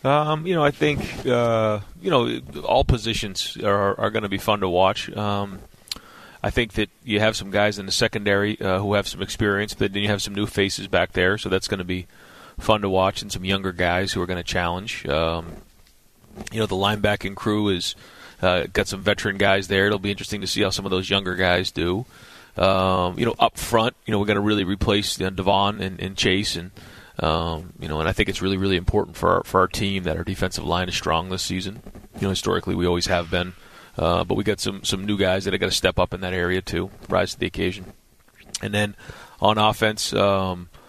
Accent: American